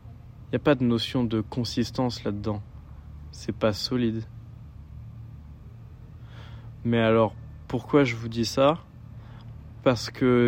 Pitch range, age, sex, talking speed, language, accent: 110-125 Hz, 20-39, male, 120 wpm, French, French